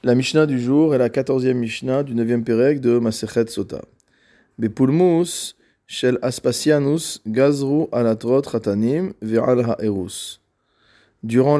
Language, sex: French, male